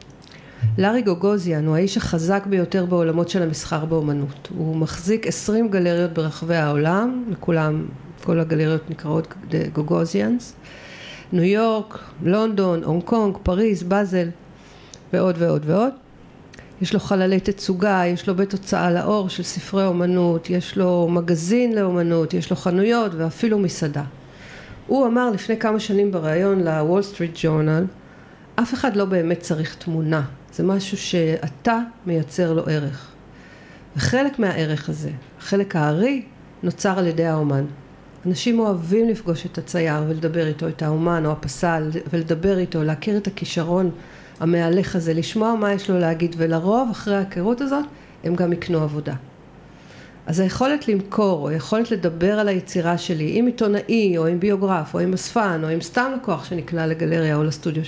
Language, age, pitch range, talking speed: Hebrew, 50-69, 160-200 Hz, 145 wpm